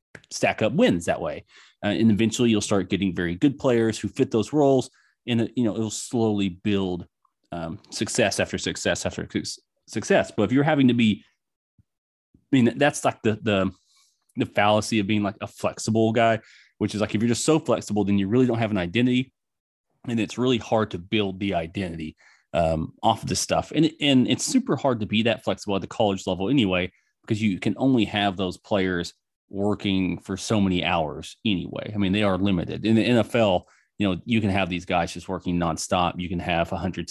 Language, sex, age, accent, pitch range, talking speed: English, male, 30-49, American, 95-115 Hz, 205 wpm